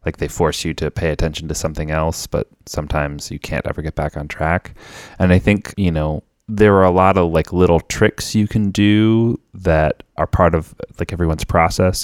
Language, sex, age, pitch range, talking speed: English, male, 20-39, 75-95 Hz, 210 wpm